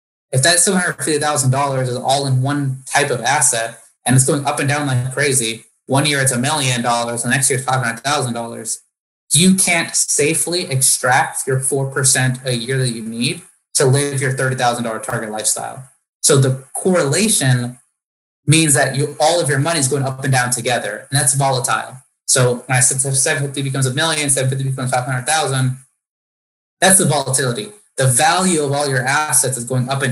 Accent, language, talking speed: American, English, 175 wpm